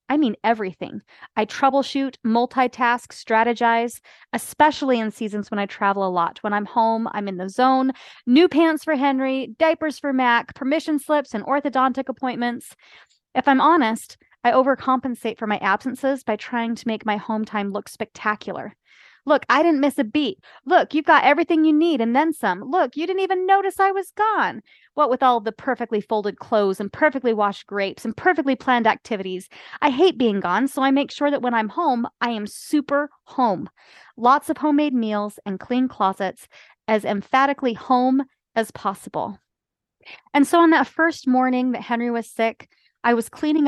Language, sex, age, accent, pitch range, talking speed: English, female, 30-49, American, 210-285 Hz, 180 wpm